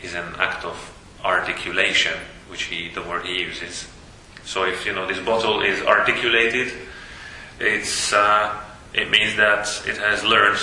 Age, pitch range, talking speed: 30-49, 90-105 Hz, 140 wpm